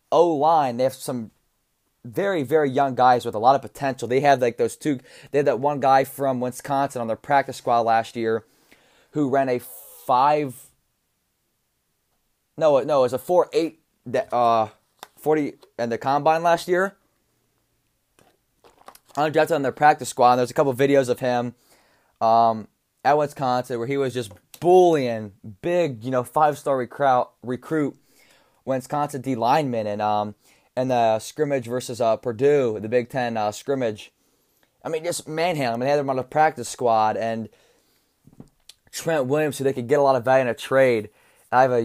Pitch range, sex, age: 115-140 Hz, male, 20-39